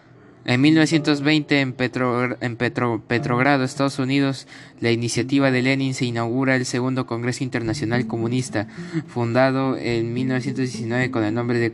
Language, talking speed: Spanish, 125 wpm